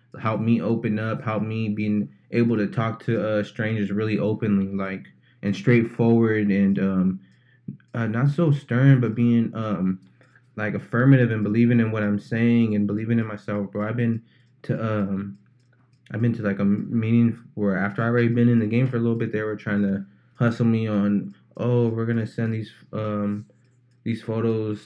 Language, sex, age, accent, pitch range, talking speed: English, male, 20-39, American, 105-120 Hz, 185 wpm